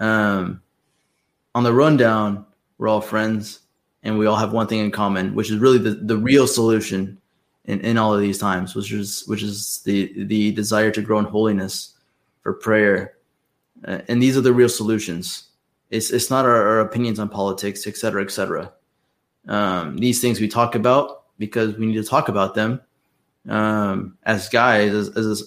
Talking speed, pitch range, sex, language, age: 185 wpm, 105-115 Hz, male, English, 20-39